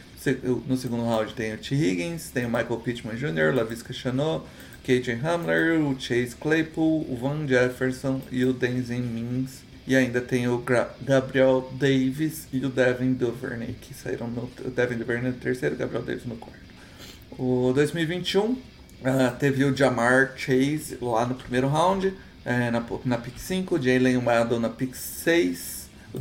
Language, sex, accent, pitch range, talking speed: Portuguese, male, Brazilian, 120-135 Hz, 170 wpm